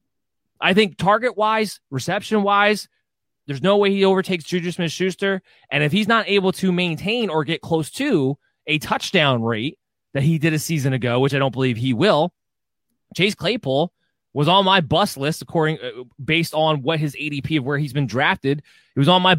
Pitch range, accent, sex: 135-180 Hz, American, male